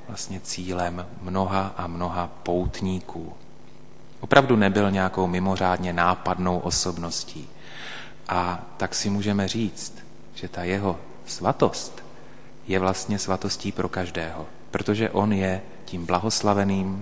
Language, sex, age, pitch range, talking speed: Slovak, male, 30-49, 90-105 Hz, 110 wpm